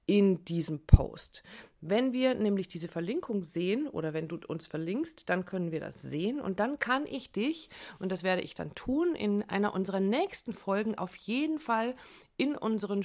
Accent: German